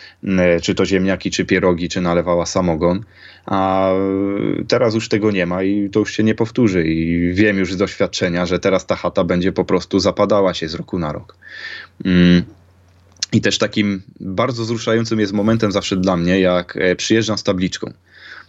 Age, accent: 20-39, native